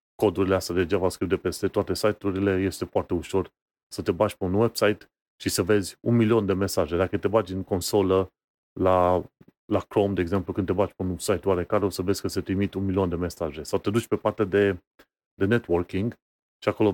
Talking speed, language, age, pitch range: 215 wpm, Romanian, 30-49, 90-110 Hz